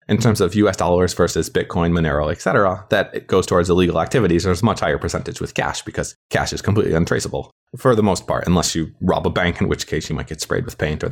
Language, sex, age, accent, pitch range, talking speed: English, male, 20-39, American, 85-110 Hz, 255 wpm